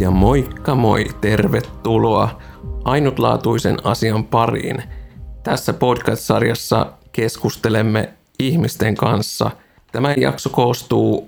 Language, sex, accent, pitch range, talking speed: Finnish, male, native, 100-120 Hz, 80 wpm